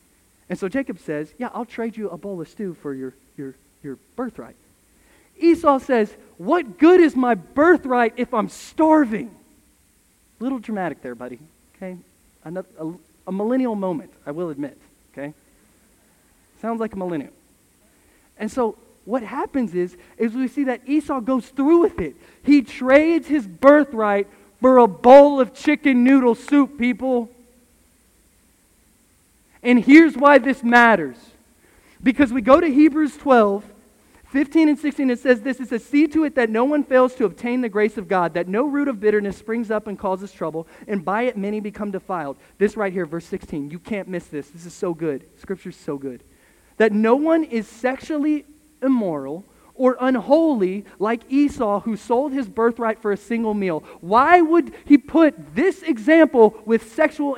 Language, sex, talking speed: English, male, 170 wpm